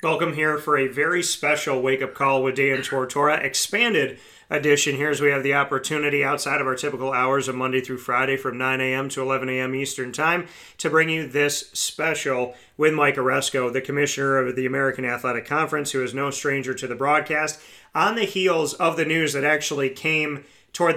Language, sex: English, male